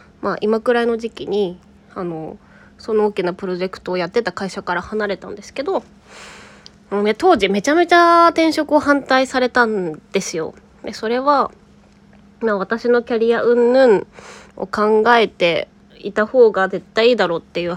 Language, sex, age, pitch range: Japanese, female, 20-39, 195-270 Hz